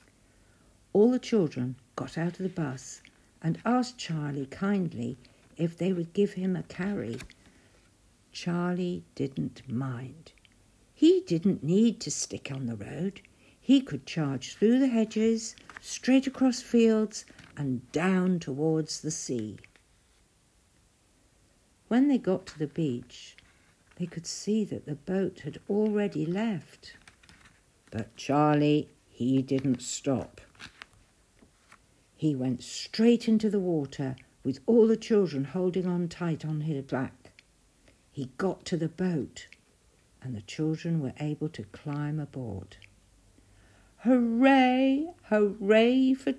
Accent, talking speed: British, 125 wpm